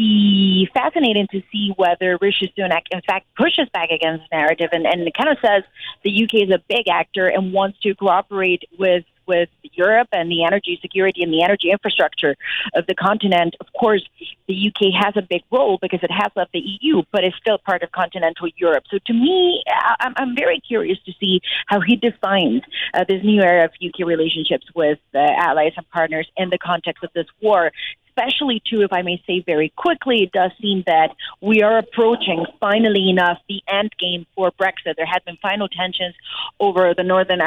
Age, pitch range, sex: 40-59, 175-210 Hz, female